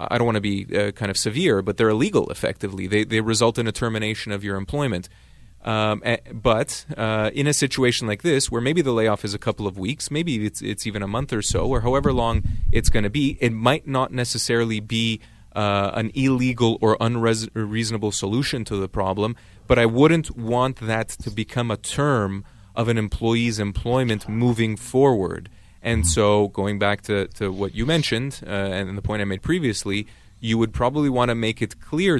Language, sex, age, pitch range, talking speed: English, male, 30-49, 100-120 Hz, 200 wpm